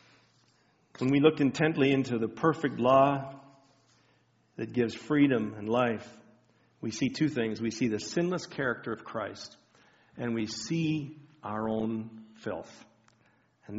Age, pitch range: 50-69, 110-135 Hz